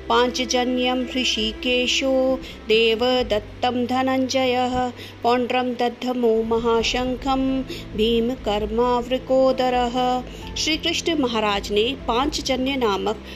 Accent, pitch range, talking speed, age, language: native, 220-265 Hz, 65 wpm, 50-69, Hindi